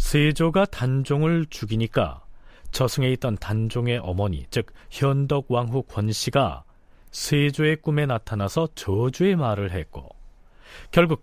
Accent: native